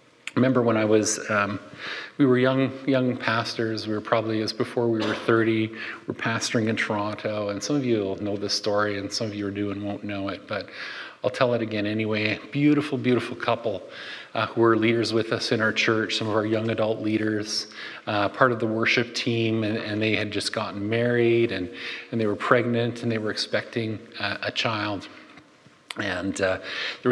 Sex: male